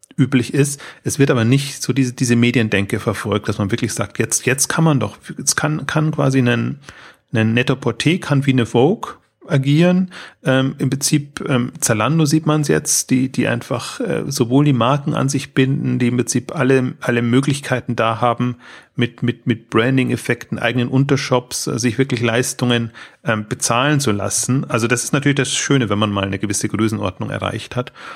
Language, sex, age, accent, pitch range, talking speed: German, male, 30-49, German, 115-135 Hz, 185 wpm